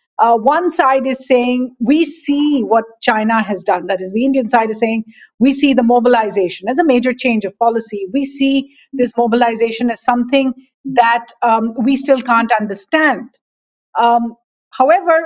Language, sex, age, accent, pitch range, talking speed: English, female, 50-69, Indian, 210-265 Hz, 165 wpm